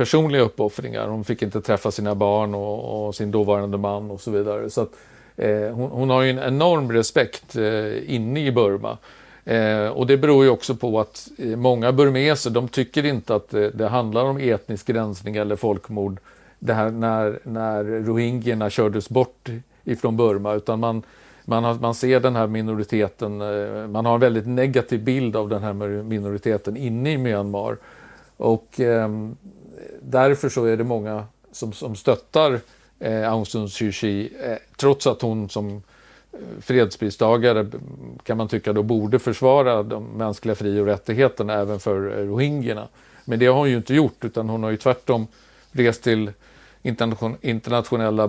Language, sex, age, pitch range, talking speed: Swedish, male, 50-69, 105-125 Hz, 170 wpm